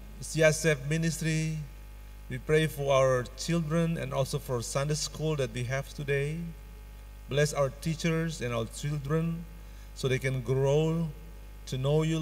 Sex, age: male, 50-69